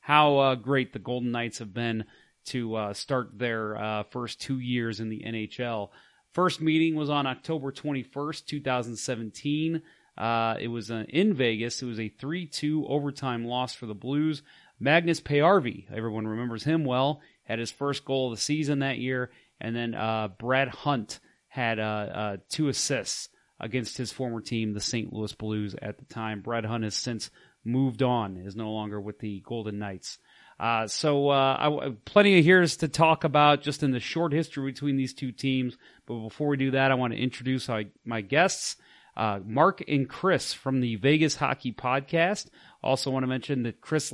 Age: 30-49